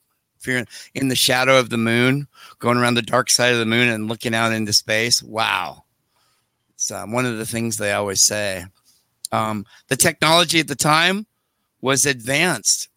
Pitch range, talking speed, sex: 120-150 Hz, 180 wpm, male